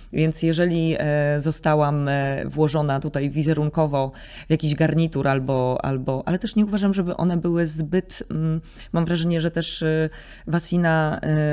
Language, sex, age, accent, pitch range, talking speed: Polish, female, 20-39, native, 150-170 Hz, 125 wpm